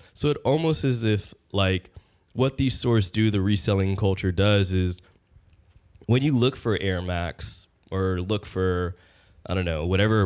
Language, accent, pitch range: English, American, 90-110 Hz